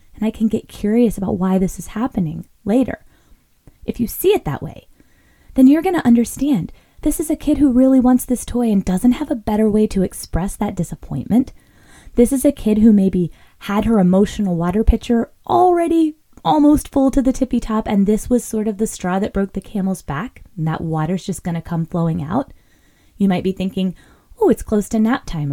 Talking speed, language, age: 210 wpm, English, 20-39